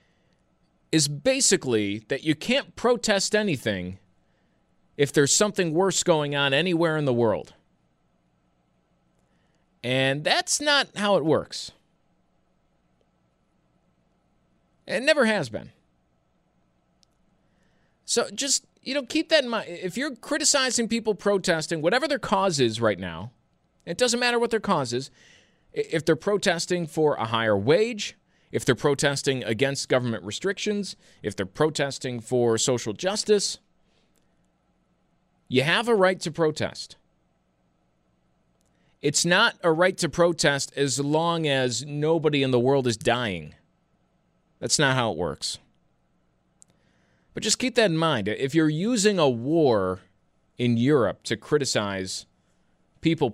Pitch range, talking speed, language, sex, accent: 115-195 Hz, 130 wpm, English, male, American